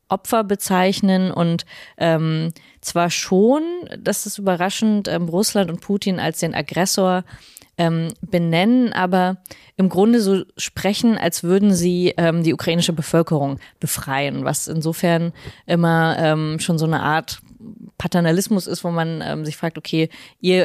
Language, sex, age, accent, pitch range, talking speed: German, female, 20-39, German, 155-180 Hz, 140 wpm